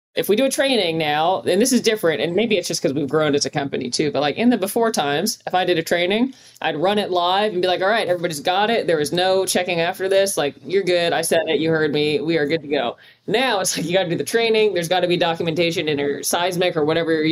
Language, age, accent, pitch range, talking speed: English, 20-39, American, 165-215 Hz, 290 wpm